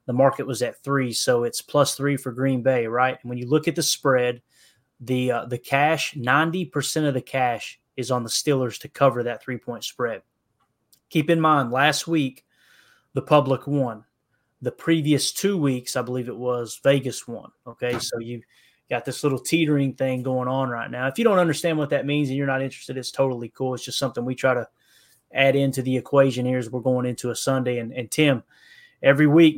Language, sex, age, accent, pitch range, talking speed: English, male, 20-39, American, 125-145 Hz, 210 wpm